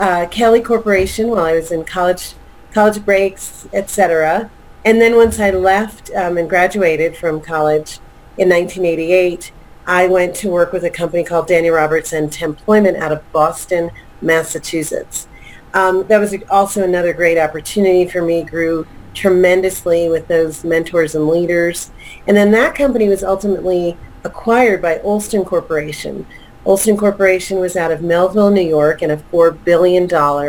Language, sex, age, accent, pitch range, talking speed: English, female, 40-59, American, 165-195 Hz, 150 wpm